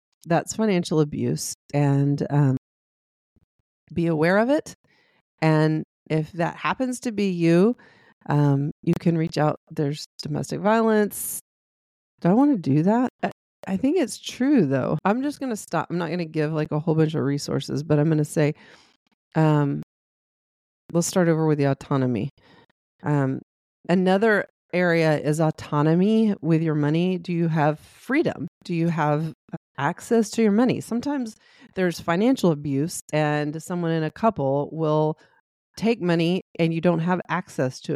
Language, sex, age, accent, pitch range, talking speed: English, female, 30-49, American, 150-190 Hz, 155 wpm